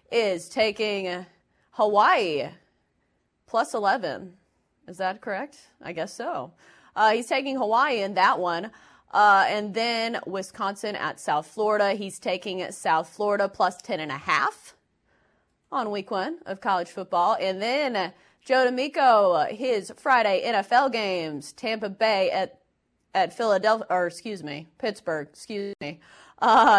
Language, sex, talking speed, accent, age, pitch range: English, female, 135 wpm, American, 30-49, 180-220 Hz